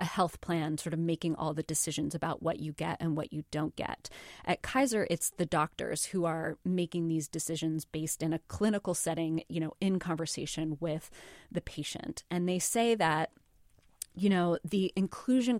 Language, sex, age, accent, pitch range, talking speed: English, female, 20-39, American, 165-190 Hz, 185 wpm